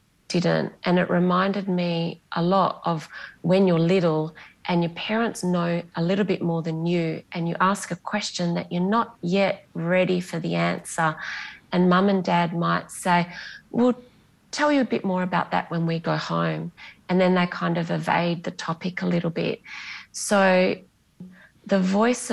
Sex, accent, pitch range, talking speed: female, Australian, 170-195 Hz, 175 wpm